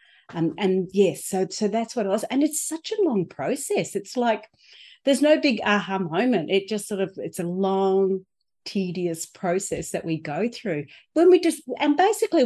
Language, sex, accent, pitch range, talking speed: English, female, Australian, 185-250 Hz, 200 wpm